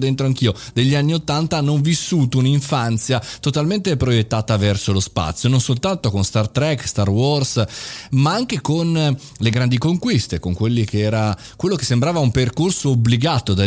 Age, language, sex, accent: 30-49, Italian, male, native